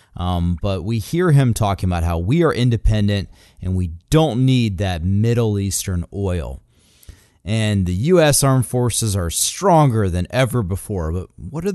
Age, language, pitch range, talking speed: 30-49, English, 90-125 Hz, 165 wpm